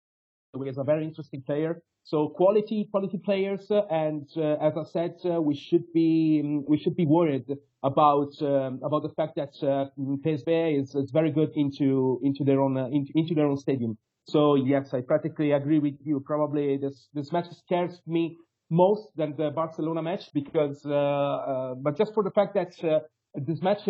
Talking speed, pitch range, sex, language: 190 wpm, 140-170 Hz, male, English